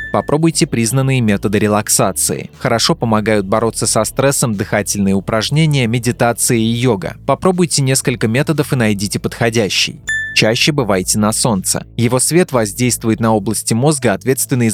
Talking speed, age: 125 wpm, 20-39